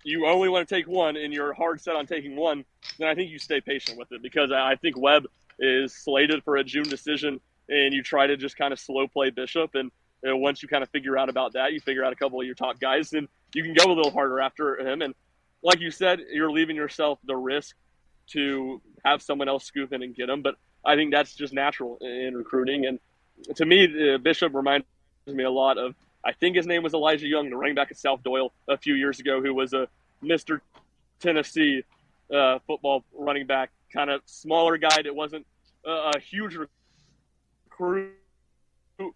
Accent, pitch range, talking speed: American, 130-155 Hz, 215 wpm